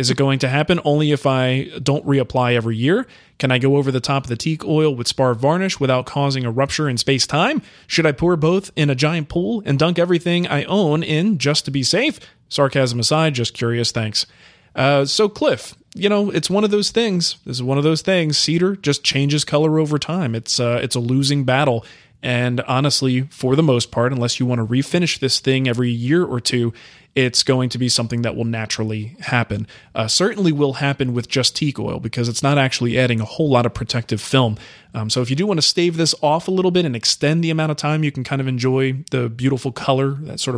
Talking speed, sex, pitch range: 230 wpm, male, 125-155 Hz